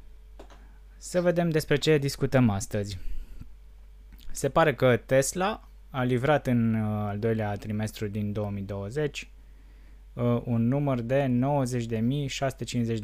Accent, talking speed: native, 110 wpm